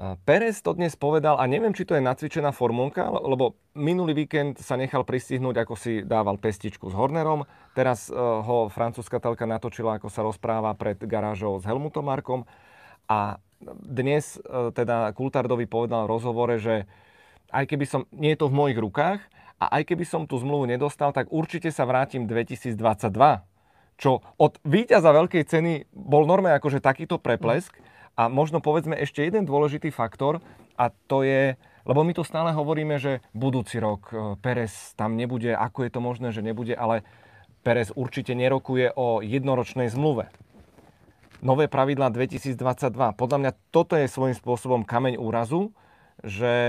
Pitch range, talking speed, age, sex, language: 115-145 Hz, 155 wpm, 30-49, male, Czech